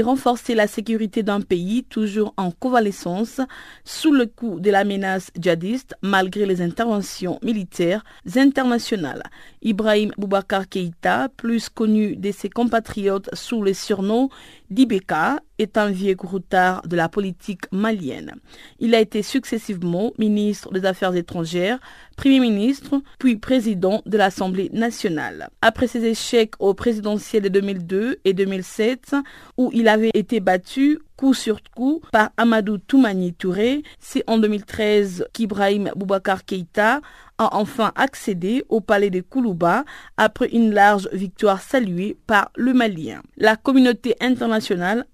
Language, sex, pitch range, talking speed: French, female, 195-240 Hz, 135 wpm